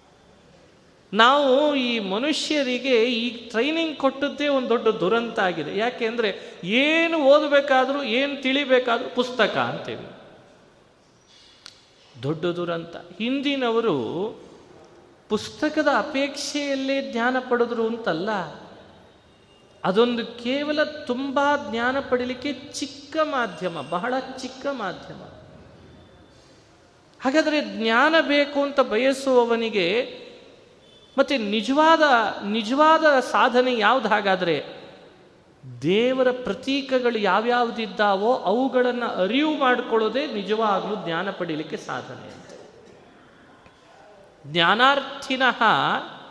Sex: male